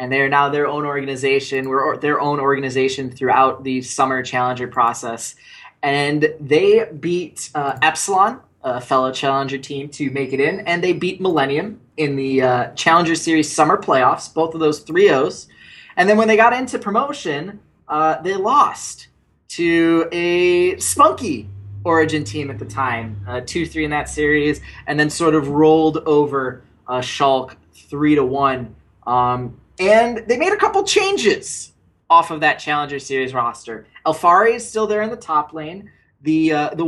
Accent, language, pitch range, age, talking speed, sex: American, English, 140-215 Hz, 20-39, 170 wpm, male